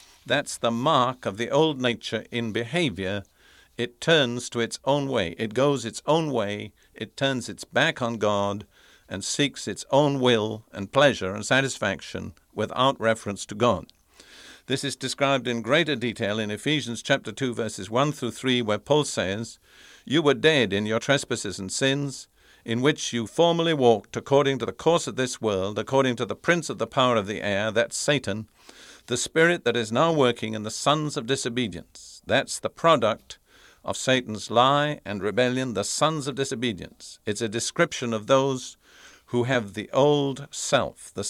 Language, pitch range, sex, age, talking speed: English, 115-145 Hz, male, 50-69, 175 wpm